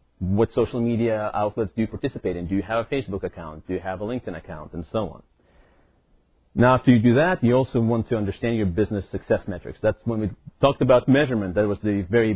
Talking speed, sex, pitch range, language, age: 230 wpm, male, 100-125 Hz, English, 30-49